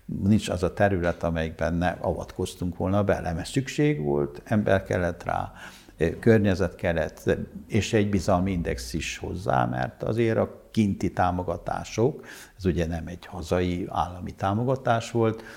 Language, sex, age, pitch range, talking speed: Hungarian, male, 60-79, 90-105 Hz, 140 wpm